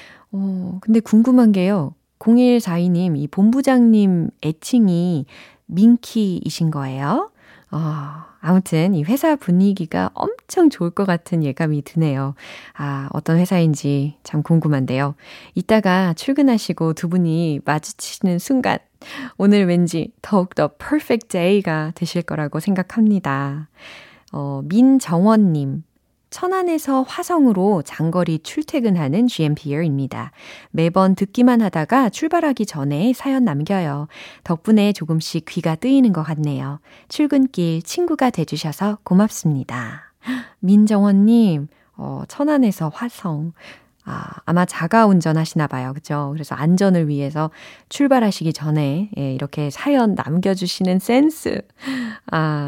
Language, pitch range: Korean, 155-225 Hz